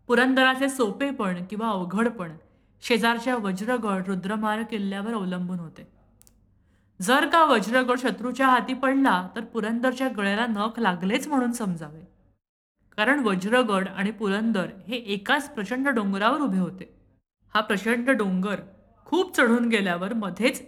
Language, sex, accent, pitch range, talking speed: Marathi, female, native, 185-255 Hz, 115 wpm